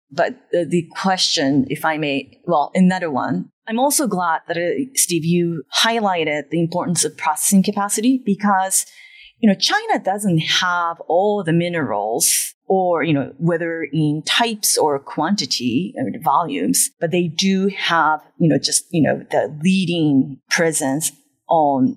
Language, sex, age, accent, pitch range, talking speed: English, female, 30-49, American, 160-220 Hz, 145 wpm